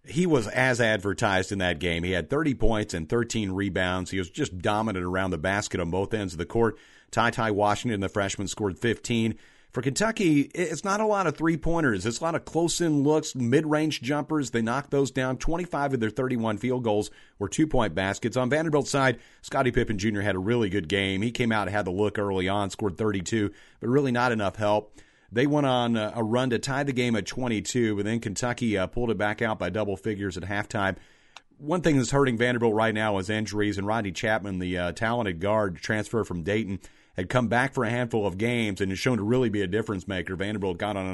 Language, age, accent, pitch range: English, 40-59, American, 100-125 Hz